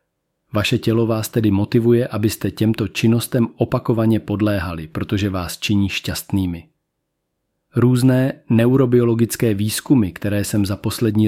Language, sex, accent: Czech, male, native